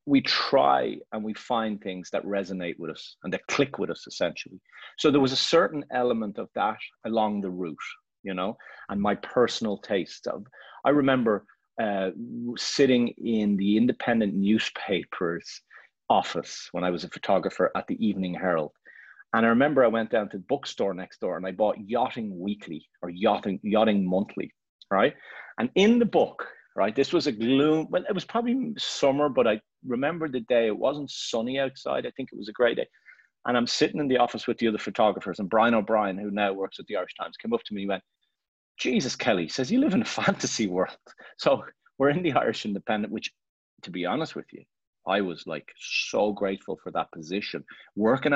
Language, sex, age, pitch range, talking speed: Polish, male, 30-49, 100-135 Hz, 195 wpm